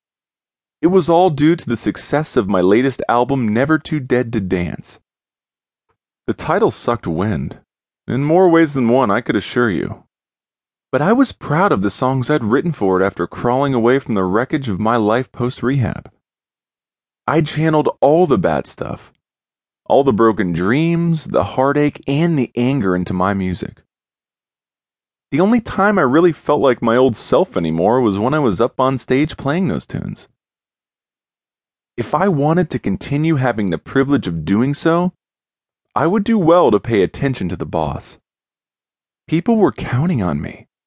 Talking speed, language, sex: 170 wpm, English, male